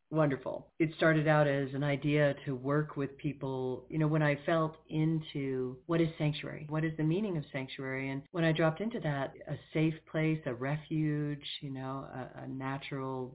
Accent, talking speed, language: American, 190 wpm, English